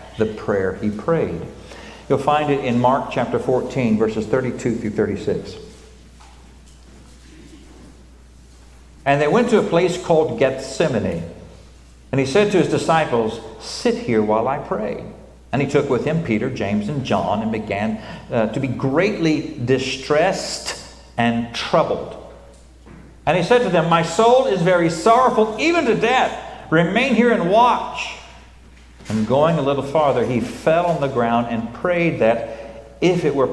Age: 50-69